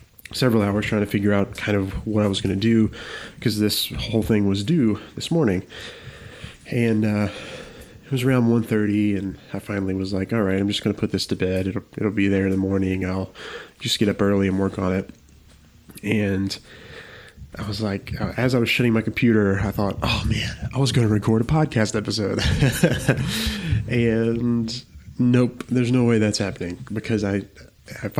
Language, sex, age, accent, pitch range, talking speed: English, male, 20-39, American, 100-120 Hz, 200 wpm